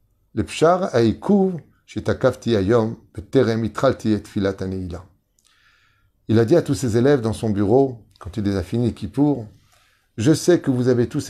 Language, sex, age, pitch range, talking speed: French, male, 30-49, 100-130 Hz, 145 wpm